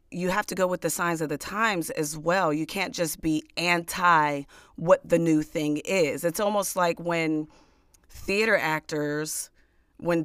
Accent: American